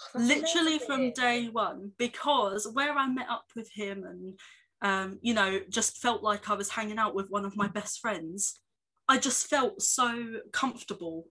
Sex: female